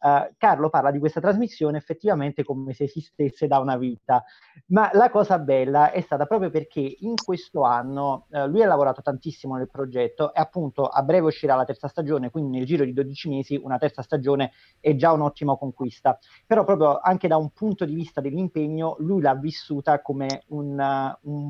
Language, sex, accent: Italian, male, native